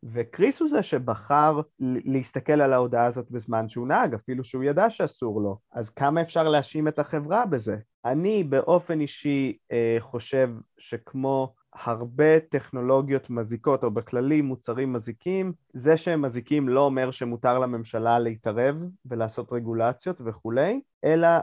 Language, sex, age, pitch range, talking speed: Hebrew, male, 20-39, 120-160 Hz, 135 wpm